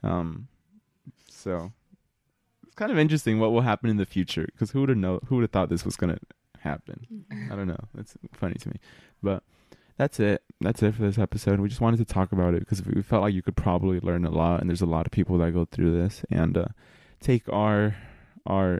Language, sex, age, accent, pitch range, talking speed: English, male, 20-39, American, 85-100 Hz, 235 wpm